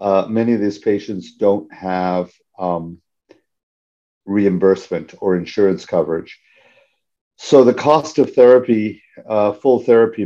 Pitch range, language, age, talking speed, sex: 95-110 Hz, English, 50-69, 115 wpm, male